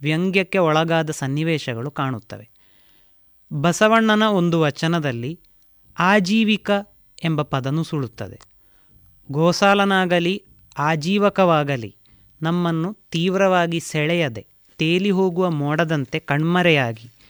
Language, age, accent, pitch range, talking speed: Kannada, 30-49, native, 150-190 Hz, 65 wpm